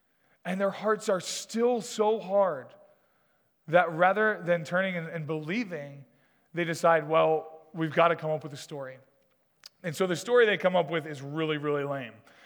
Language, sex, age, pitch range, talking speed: English, male, 20-39, 160-195 Hz, 175 wpm